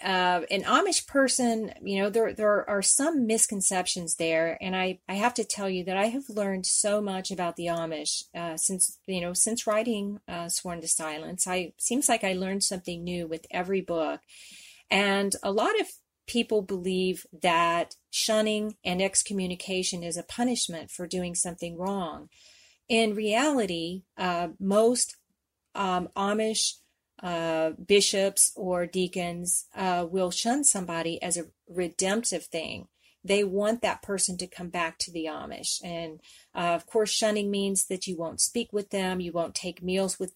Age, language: 40-59, English